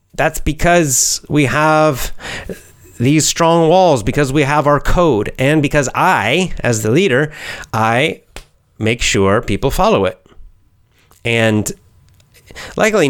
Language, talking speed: English, 120 wpm